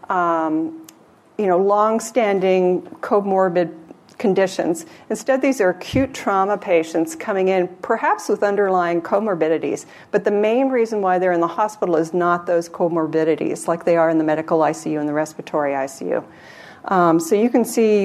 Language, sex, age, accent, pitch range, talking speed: English, female, 50-69, American, 175-215 Hz, 155 wpm